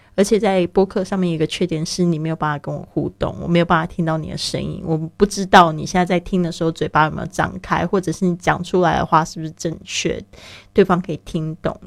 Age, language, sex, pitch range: 20-39, Chinese, female, 160-185 Hz